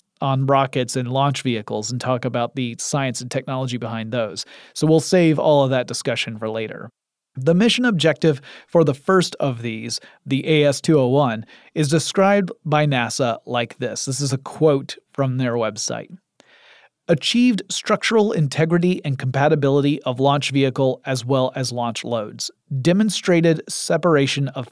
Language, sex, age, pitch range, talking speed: English, male, 30-49, 130-170 Hz, 150 wpm